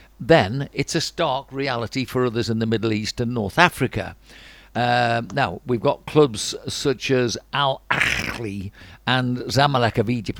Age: 60-79